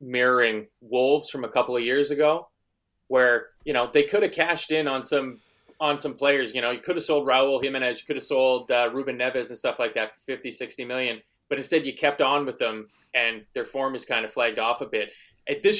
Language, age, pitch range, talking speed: English, 20-39, 120-155 Hz, 235 wpm